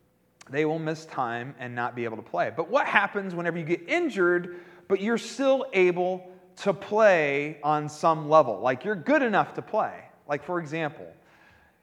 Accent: American